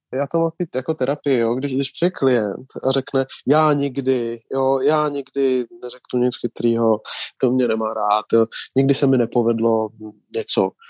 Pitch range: 125-150 Hz